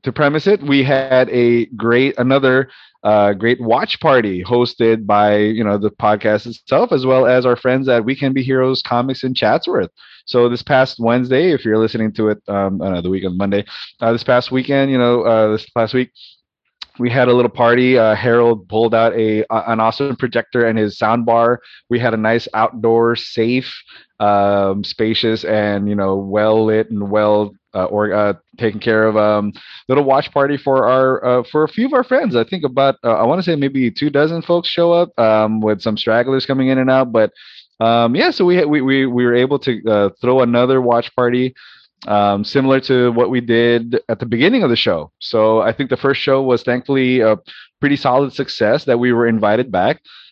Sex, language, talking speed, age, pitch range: male, English, 205 wpm, 20-39, 110-130 Hz